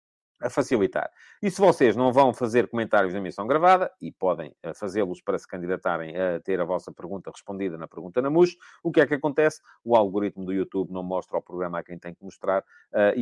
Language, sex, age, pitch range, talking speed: English, male, 40-59, 105-130 Hz, 220 wpm